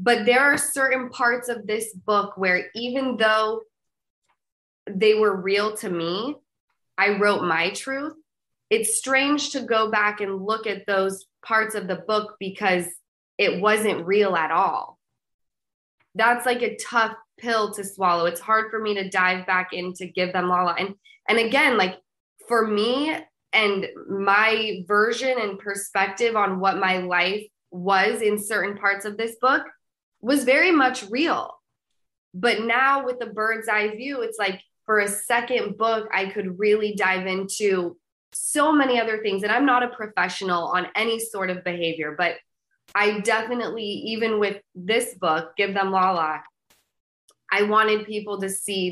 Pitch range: 190-225 Hz